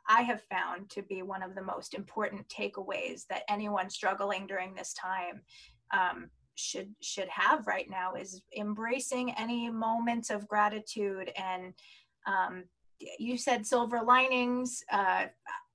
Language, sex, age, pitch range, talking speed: English, female, 20-39, 200-235 Hz, 135 wpm